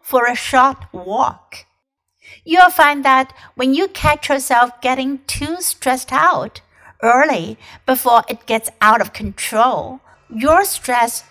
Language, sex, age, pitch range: Chinese, female, 60-79, 215-270 Hz